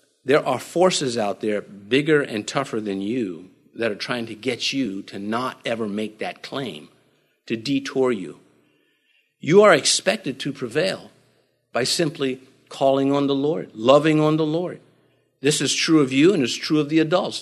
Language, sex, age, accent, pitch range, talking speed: English, male, 50-69, American, 130-180 Hz, 175 wpm